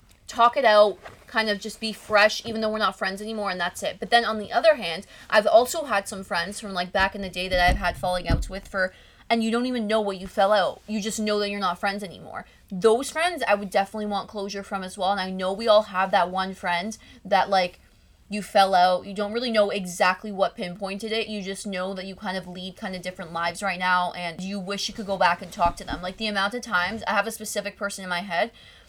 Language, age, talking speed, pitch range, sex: English, 20-39, 265 wpm, 185-220 Hz, female